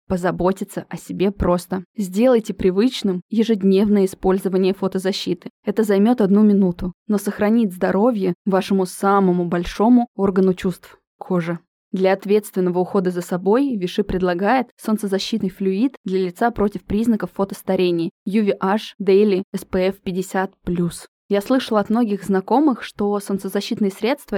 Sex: female